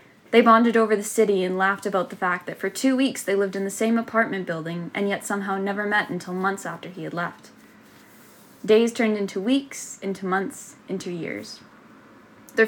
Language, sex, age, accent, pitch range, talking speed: English, female, 10-29, American, 180-210 Hz, 195 wpm